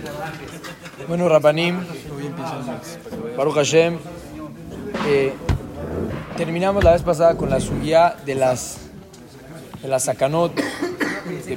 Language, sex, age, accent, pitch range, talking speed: Spanish, male, 40-59, Mexican, 150-190 Hz, 95 wpm